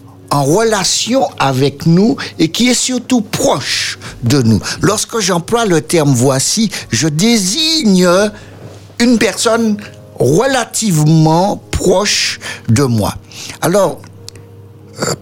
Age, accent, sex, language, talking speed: 60-79, French, male, French, 105 wpm